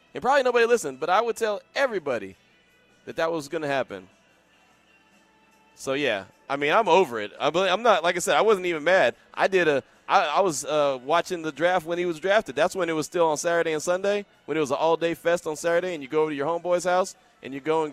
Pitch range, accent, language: 140-180 Hz, American, English